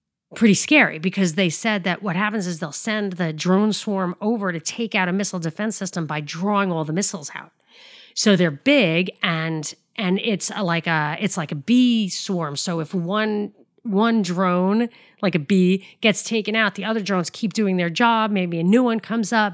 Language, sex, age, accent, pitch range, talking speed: English, female, 40-59, American, 175-225 Hz, 205 wpm